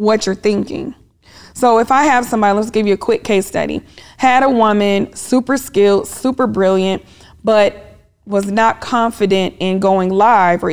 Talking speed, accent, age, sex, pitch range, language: 170 wpm, American, 20-39, female, 195-230 Hz, English